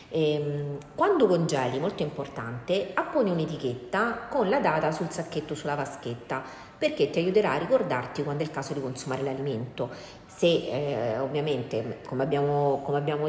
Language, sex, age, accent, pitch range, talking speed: Italian, female, 30-49, native, 135-160 Hz, 145 wpm